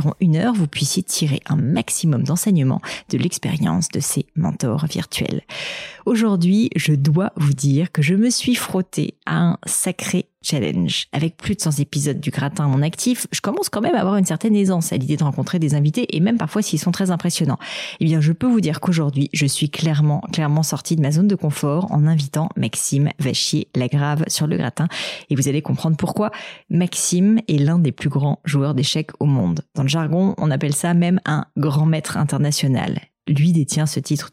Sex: female